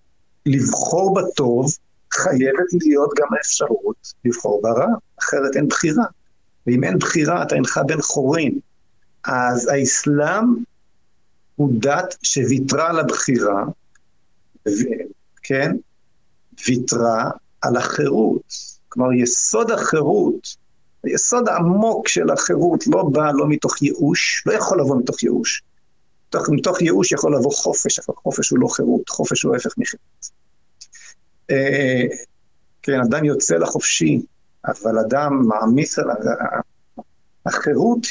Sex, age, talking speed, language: male, 50-69, 110 wpm, Hebrew